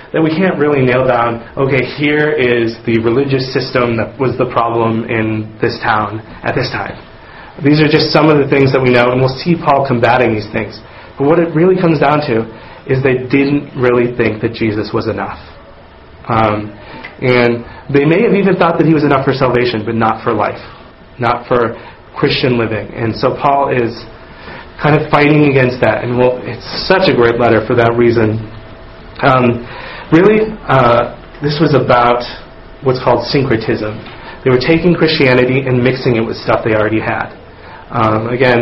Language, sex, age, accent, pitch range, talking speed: English, male, 30-49, American, 115-140 Hz, 185 wpm